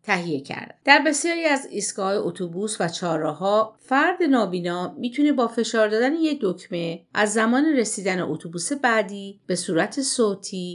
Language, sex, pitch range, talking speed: Persian, female, 175-235 Hz, 140 wpm